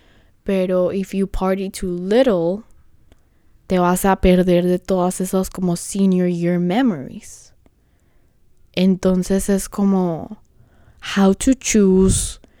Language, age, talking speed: Spanish, 10-29, 110 wpm